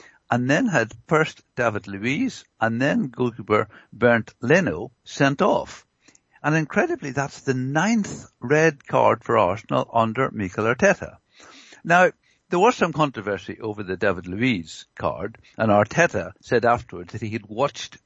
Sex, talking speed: male, 145 wpm